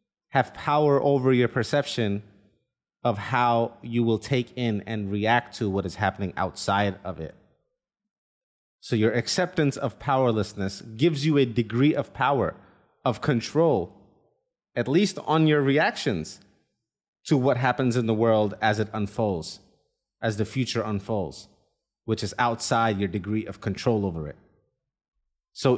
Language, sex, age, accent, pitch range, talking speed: English, male, 30-49, American, 105-145 Hz, 140 wpm